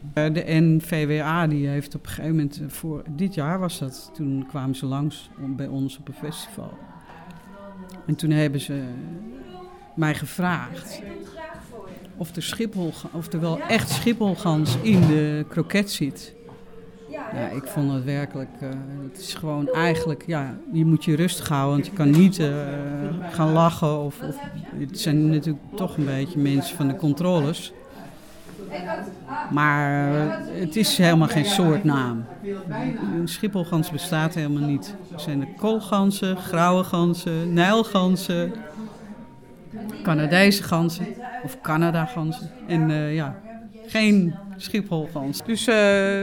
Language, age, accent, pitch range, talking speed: Dutch, 50-69, Dutch, 150-195 Hz, 130 wpm